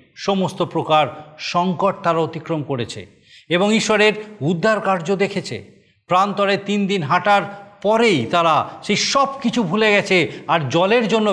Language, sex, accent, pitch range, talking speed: Bengali, male, native, 140-190 Hz, 130 wpm